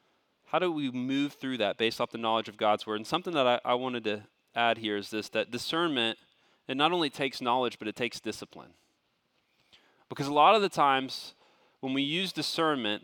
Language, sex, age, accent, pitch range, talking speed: English, male, 30-49, American, 120-155 Hz, 205 wpm